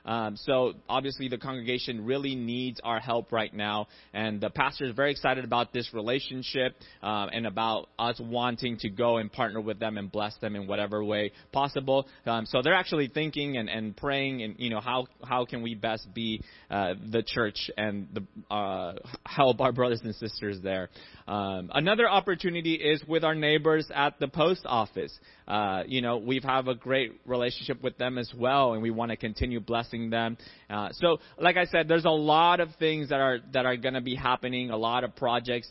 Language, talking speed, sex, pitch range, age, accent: English, 200 wpm, male, 115-145 Hz, 20-39, American